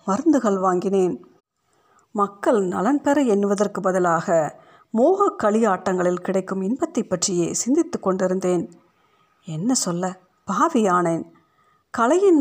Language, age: Tamil, 50-69